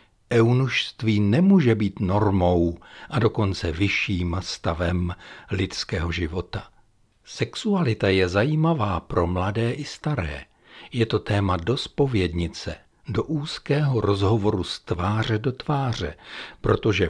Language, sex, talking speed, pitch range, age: Czech, male, 105 wpm, 90-130 Hz, 60-79